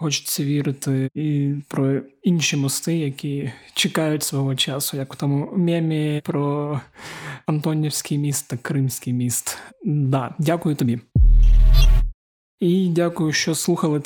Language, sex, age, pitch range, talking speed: Ukrainian, male, 20-39, 140-160 Hz, 120 wpm